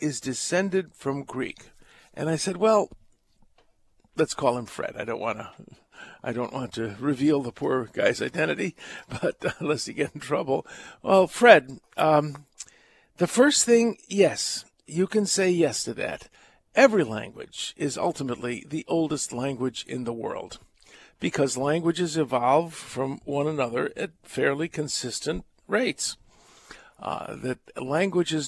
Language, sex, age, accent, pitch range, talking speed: English, male, 50-69, American, 135-185 Hz, 145 wpm